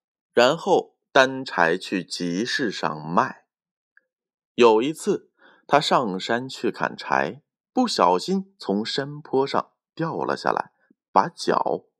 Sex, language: male, Chinese